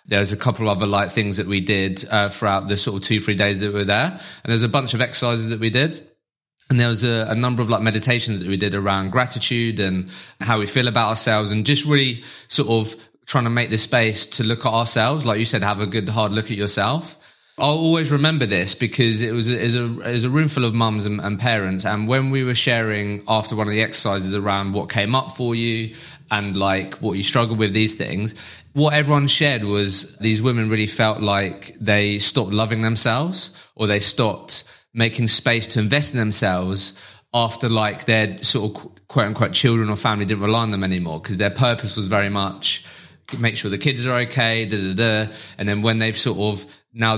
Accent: British